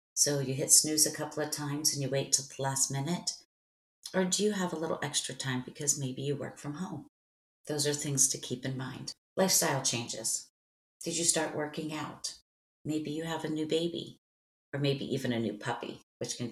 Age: 40-59